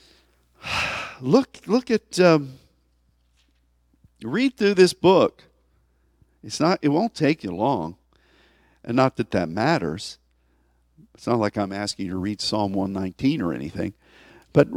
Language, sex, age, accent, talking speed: English, male, 50-69, American, 135 wpm